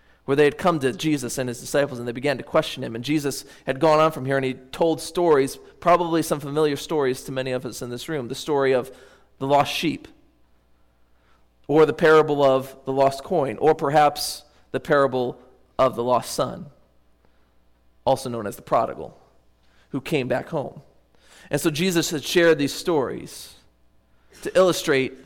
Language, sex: English, male